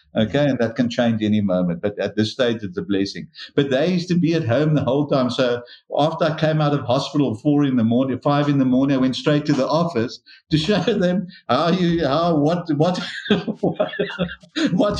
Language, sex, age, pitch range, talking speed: English, male, 60-79, 115-165 Hz, 215 wpm